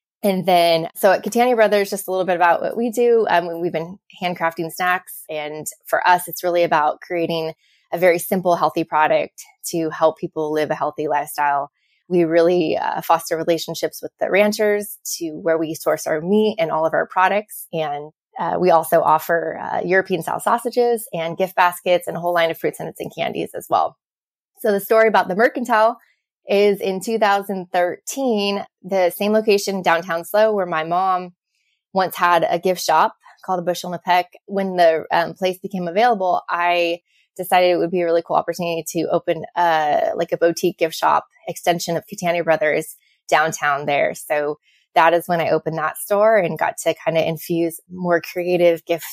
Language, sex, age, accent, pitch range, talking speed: English, female, 20-39, American, 165-190 Hz, 190 wpm